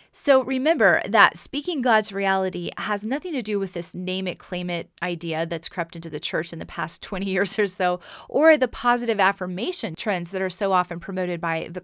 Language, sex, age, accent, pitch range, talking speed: English, female, 30-49, American, 175-220 Hz, 210 wpm